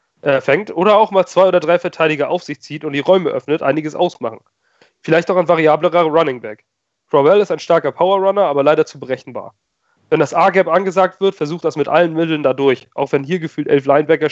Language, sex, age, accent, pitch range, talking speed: German, male, 30-49, German, 145-190 Hz, 210 wpm